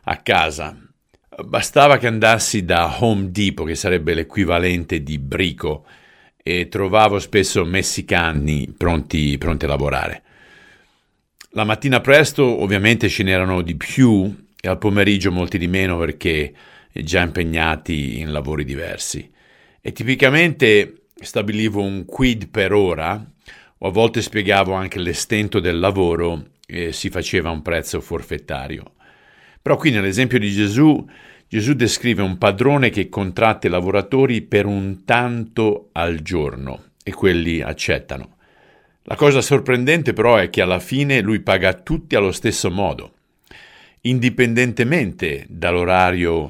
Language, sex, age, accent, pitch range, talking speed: Italian, male, 50-69, native, 85-115 Hz, 130 wpm